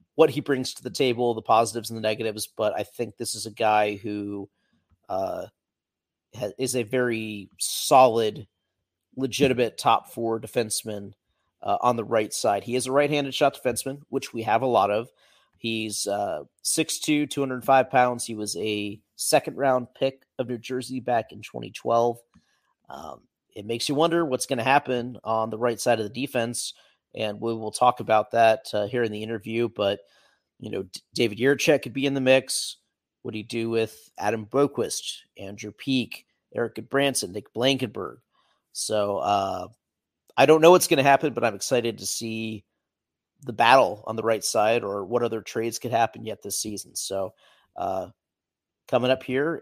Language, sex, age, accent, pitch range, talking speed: English, male, 30-49, American, 110-130 Hz, 175 wpm